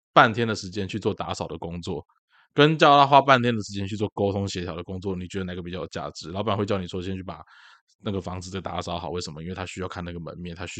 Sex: male